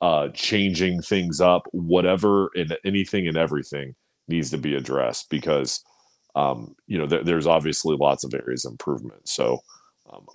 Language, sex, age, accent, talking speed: English, male, 30-49, American, 155 wpm